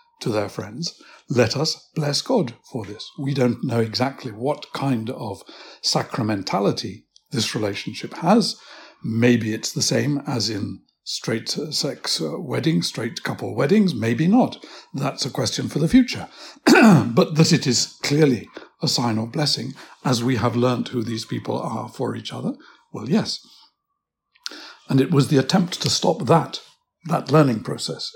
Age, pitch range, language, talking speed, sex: 60-79, 120-185 Hz, English, 155 wpm, male